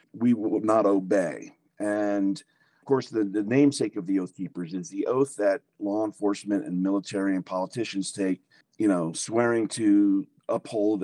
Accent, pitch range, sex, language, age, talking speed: American, 95-120 Hz, male, English, 40-59, 165 wpm